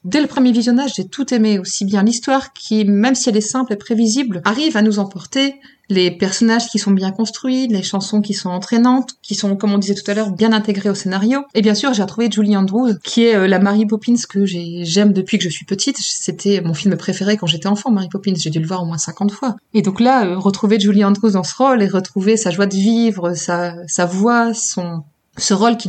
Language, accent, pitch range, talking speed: French, French, 185-225 Hz, 240 wpm